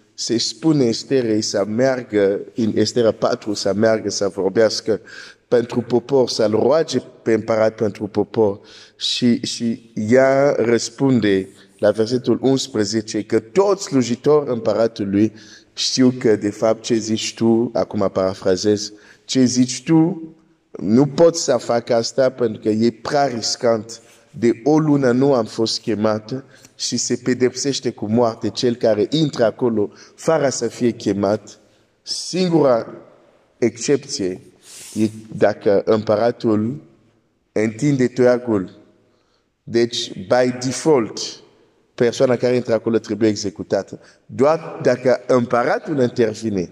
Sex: male